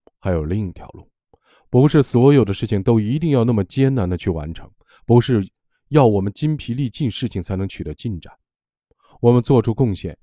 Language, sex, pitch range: Chinese, male, 90-125 Hz